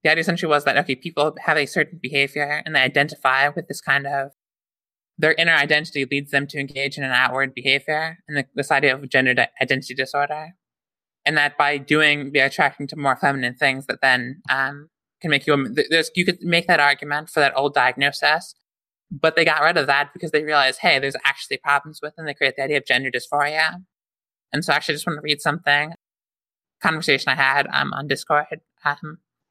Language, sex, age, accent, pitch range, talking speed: English, male, 20-39, American, 140-160 Hz, 205 wpm